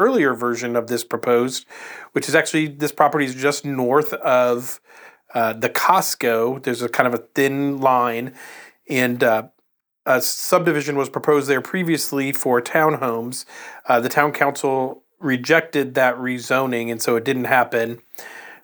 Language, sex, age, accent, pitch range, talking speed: English, male, 40-59, American, 125-150 Hz, 150 wpm